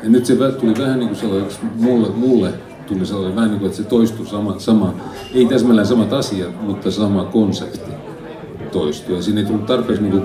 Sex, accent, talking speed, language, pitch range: male, native, 180 wpm, Finnish, 90-110 Hz